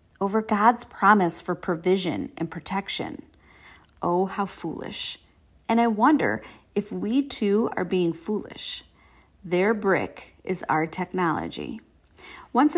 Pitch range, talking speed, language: 175-240 Hz, 115 wpm, English